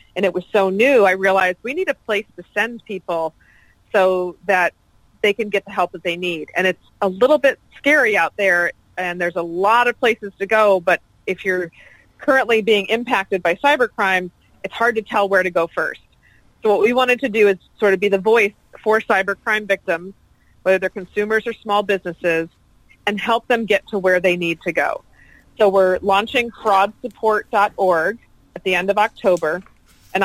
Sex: female